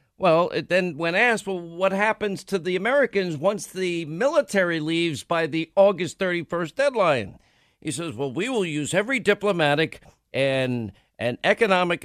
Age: 50-69